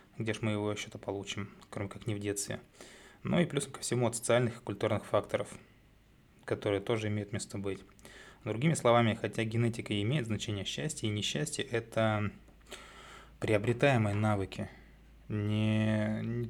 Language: Russian